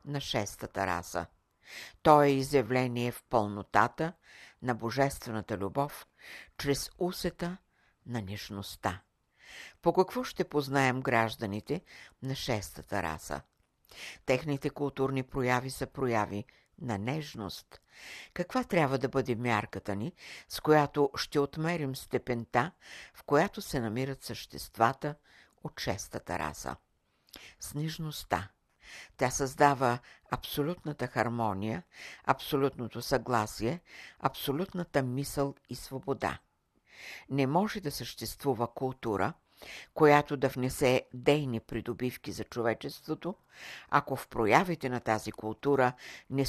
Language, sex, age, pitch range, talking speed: Bulgarian, female, 60-79, 110-145 Hz, 100 wpm